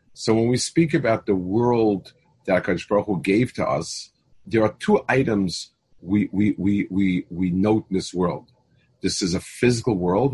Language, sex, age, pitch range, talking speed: English, male, 50-69, 100-130 Hz, 185 wpm